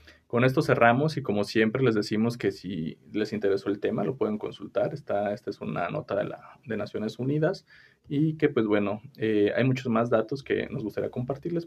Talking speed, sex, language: 205 wpm, male, Spanish